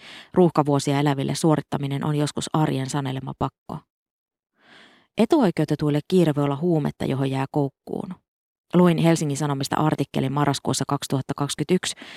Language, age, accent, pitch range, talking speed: Finnish, 20-39, native, 140-165 Hz, 110 wpm